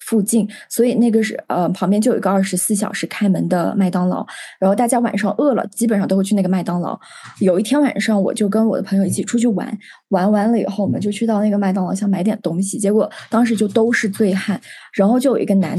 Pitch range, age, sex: 190-225 Hz, 20-39, female